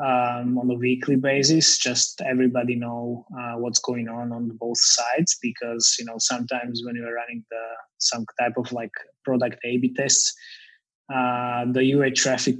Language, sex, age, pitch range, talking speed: English, male, 20-39, 125-145 Hz, 165 wpm